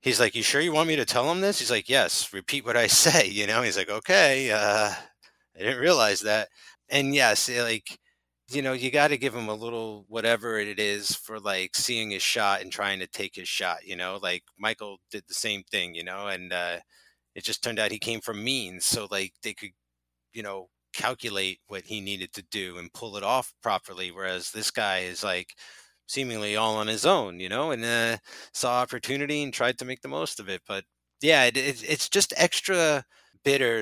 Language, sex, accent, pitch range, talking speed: English, male, American, 100-120 Hz, 220 wpm